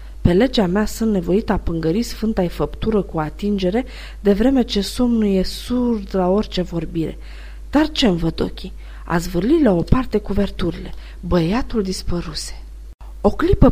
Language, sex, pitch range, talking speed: Romanian, female, 180-270 Hz, 145 wpm